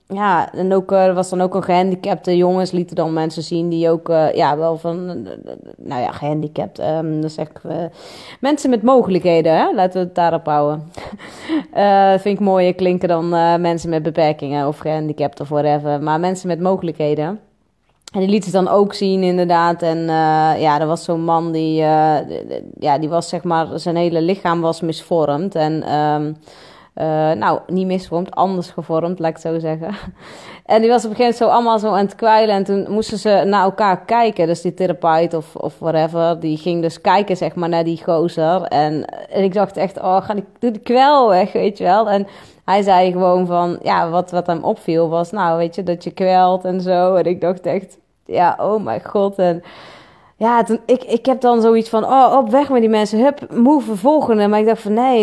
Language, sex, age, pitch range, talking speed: Dutch, female, 20-39, 165-205 Hz, 205 wpm